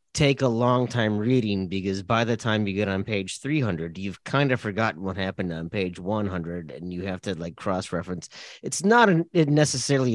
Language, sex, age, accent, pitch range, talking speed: English, male, 30-49, American, 95-125 Hz, 200 wpm